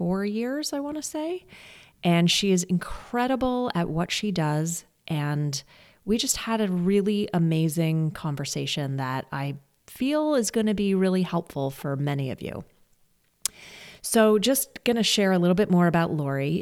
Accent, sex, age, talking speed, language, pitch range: American, female, 30-49, 165 wpm, English, 160-215 Hz